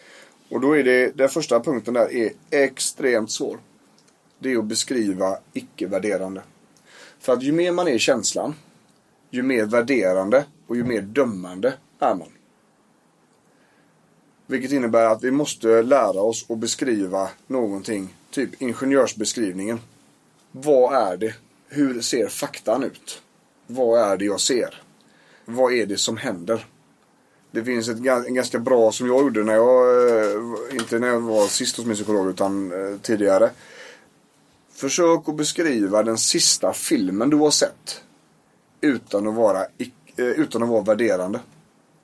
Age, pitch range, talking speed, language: 30-49, 110-135 Hz, 140 wpm, English